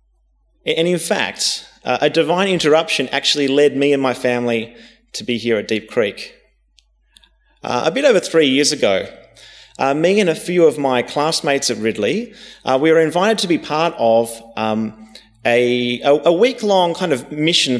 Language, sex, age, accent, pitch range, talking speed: English, male, 30-49, Australian, 125-175 Hz, 175 wpm